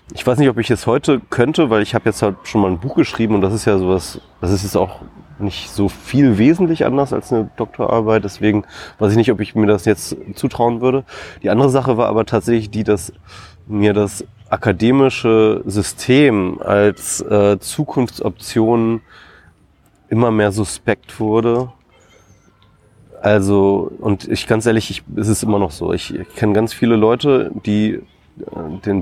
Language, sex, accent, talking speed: German, male, German, 170 wpm